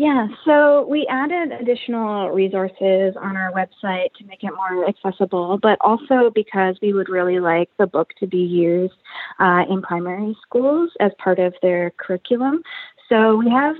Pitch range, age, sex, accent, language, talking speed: 180-235 Hz, 20-39, female, American, English, 165 wpm